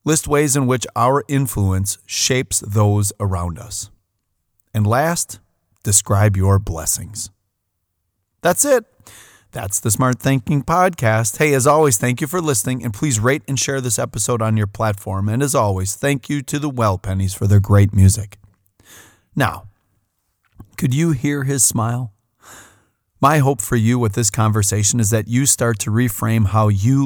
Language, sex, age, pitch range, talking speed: English, male, 30-49, 105-145 Hz, 160 wpm